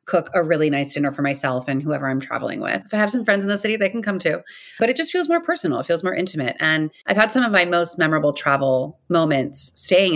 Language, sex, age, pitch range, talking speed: English, female, 30-49, 170-230 Hz, 265 wpm